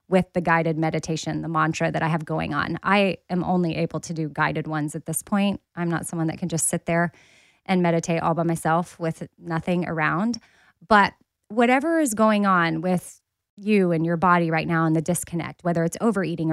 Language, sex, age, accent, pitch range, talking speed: English, female, 20-39, American, 170-215 Hz, 205 wpm